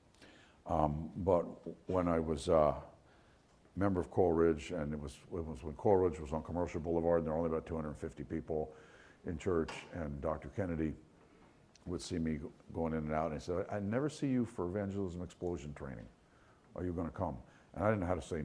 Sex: male